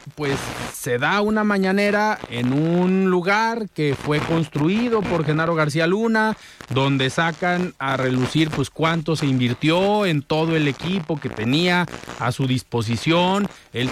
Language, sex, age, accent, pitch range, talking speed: Spanish, male, 40-59, Mexican, 145-200 Hz, 140 wpm